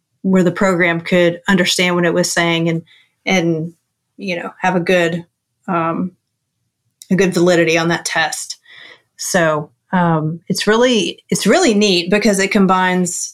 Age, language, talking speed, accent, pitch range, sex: 30-49, English, 150 wpm, American, 170-210 Hz, female